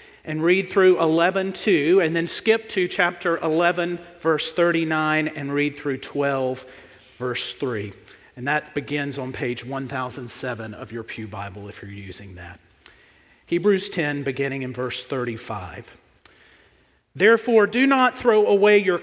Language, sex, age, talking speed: English, male, 40-59, 140 wpm